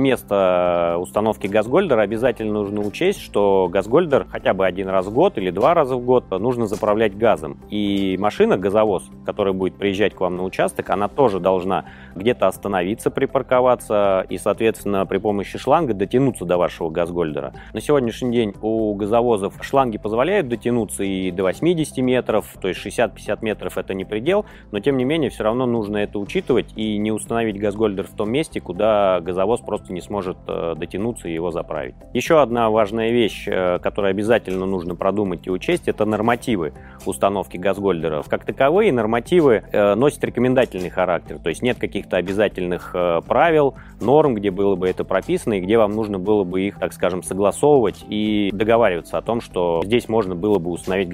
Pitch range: 95-120 Hz